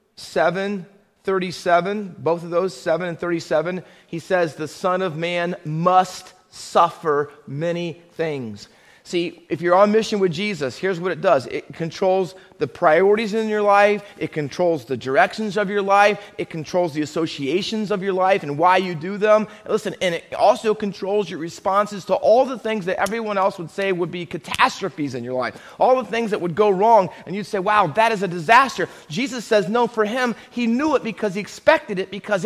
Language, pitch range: English, 175-220 Hz